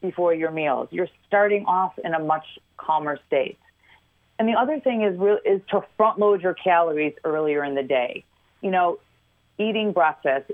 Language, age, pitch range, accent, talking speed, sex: English, 40-59, 145-185 Hz, American, 175 wpm, female